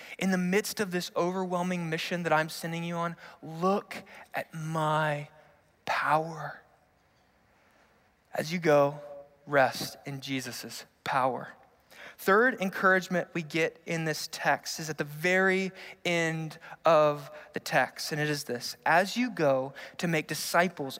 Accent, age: American, 20-39